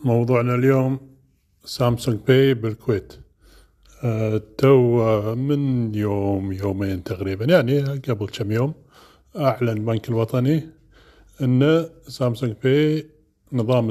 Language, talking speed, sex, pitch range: Arabic, 90 wpm, male, 105-135 Hz